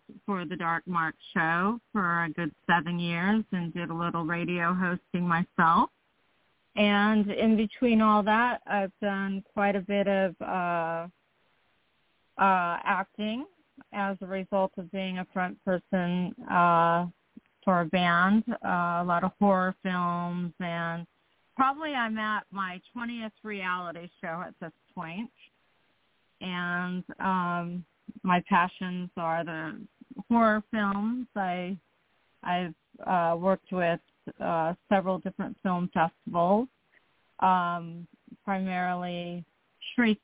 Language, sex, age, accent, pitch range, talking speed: English, female, 40-59, American, 170-200 Hz, 120 wpm